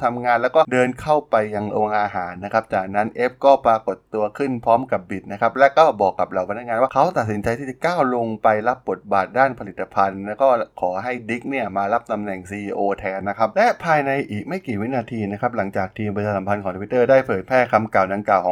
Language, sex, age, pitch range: Thai, male, 20-39, 100-130 Hz